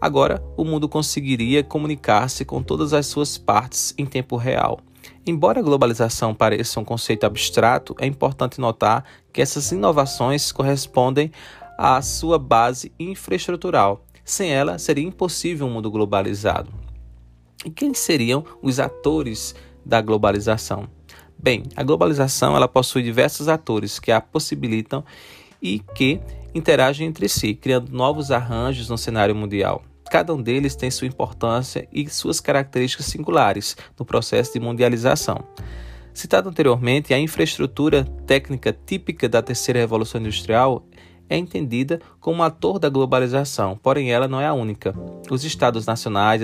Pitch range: 105-140 Hz